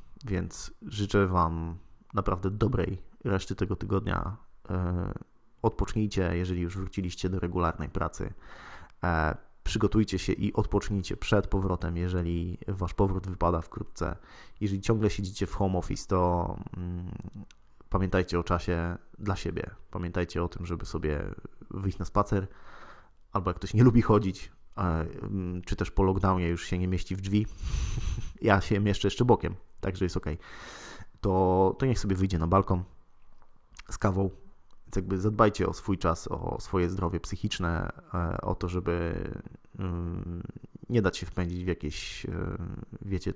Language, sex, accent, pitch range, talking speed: Polish, male, native, 85-100 Hz, 135 wpm